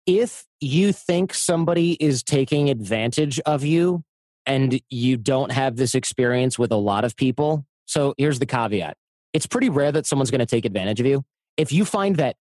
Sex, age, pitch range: male, 30-49, 120-155 Hz